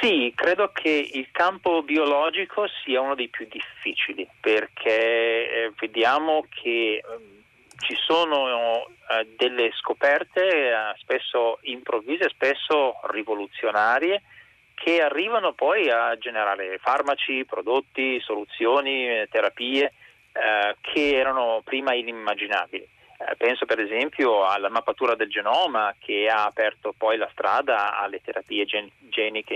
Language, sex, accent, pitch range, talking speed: Italian, male, native, 115-170 Hz, 105 wpm